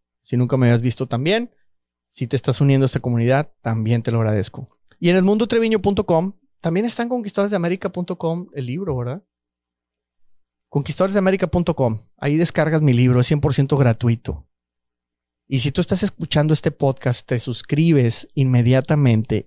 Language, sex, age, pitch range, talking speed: Spanish, male, 30-49, 95-135 Hz, 140 wpm